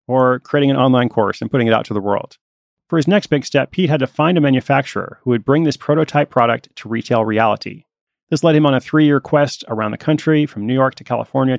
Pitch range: 120-155 Hz